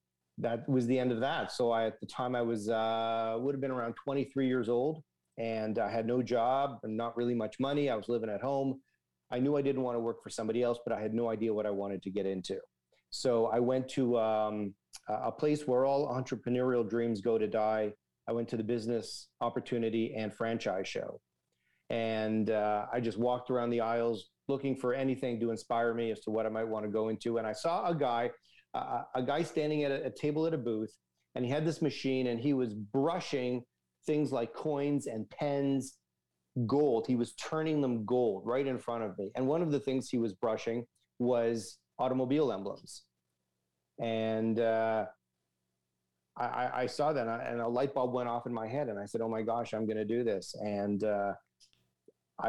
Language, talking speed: English, 210 wpm